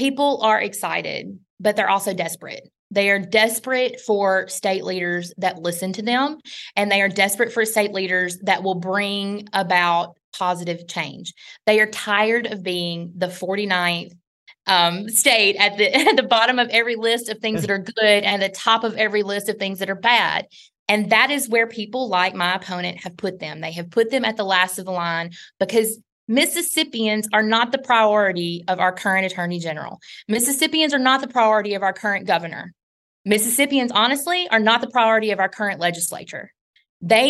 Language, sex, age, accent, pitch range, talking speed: English, female, 20-39, American, 185-230 Hz, 185 wpm